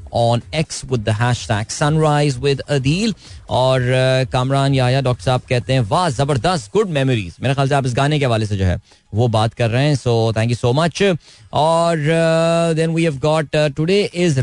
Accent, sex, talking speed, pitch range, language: native, male, 220 wpm, 110-150 Hz, Hindi